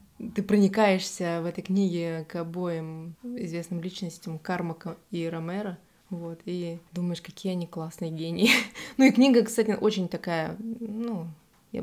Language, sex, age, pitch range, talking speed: Russian, female, 20-39, 175-230 Hz, 135 wpm